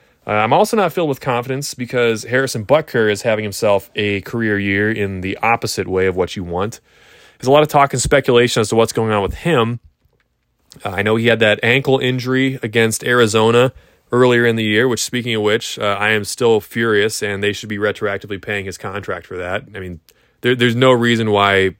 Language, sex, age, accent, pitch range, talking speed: English, male, 20-39, American, 105-150 Hz, 210 wpm